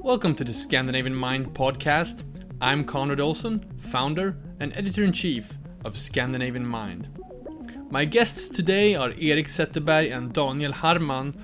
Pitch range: 130-175 Hz